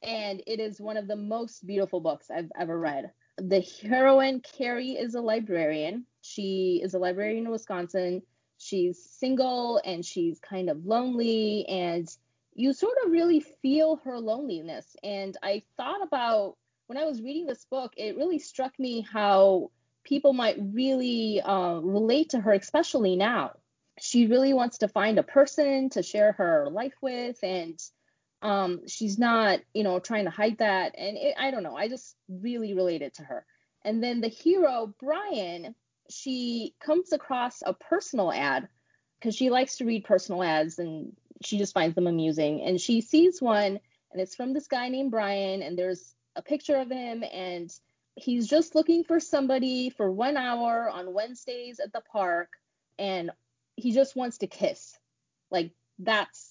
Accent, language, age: American, English, 20-39